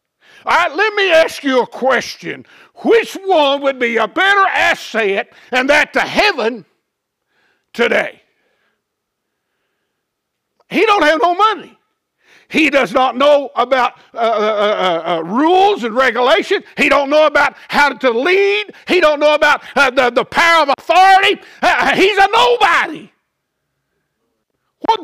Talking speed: 140 wpm